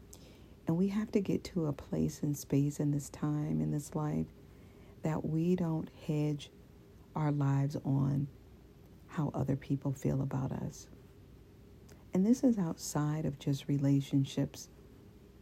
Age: 50-69